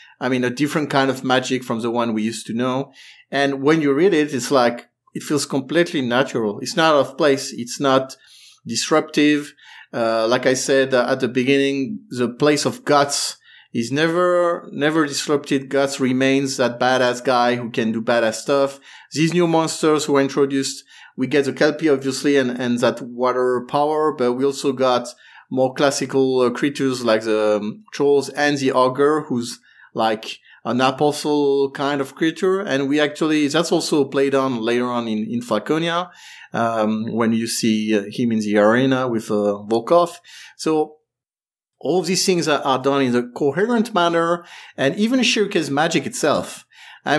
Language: English